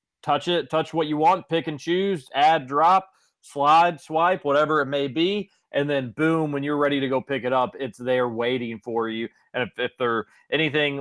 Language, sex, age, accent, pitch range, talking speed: English, male, 30-49, American, 120-155 Hz, 205 wpm